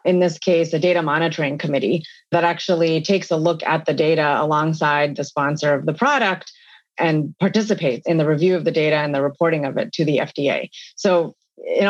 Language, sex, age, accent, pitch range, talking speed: English, female, 30-49, American, 155-190 Hz, 195 wpm